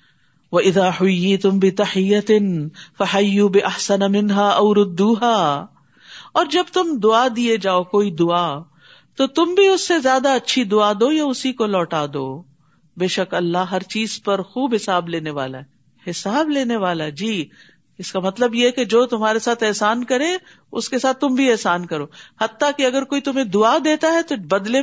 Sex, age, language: female, 50-69, Urdu